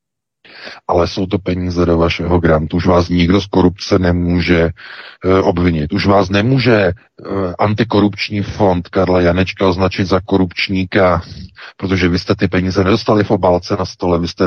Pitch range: 85-95 Hz